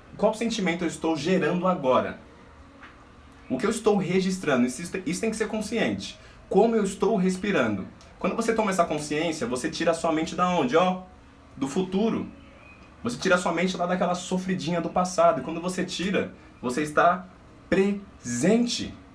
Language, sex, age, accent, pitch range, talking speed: Portuguese, male, 20-39, Brazilian, 125-185 Hz, 165 wpm